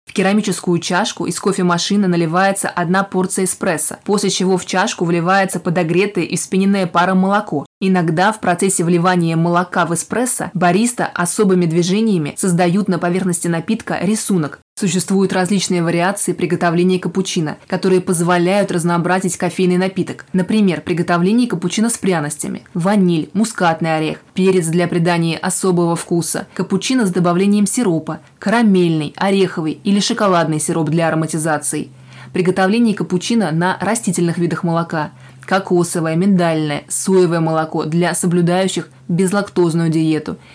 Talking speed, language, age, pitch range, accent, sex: 125 wpm, Russian, 20-39, 170-195 Hz, native, female